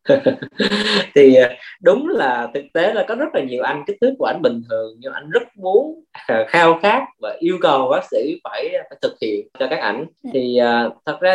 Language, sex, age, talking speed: Vietnamese, male, 20-39, 210 wpm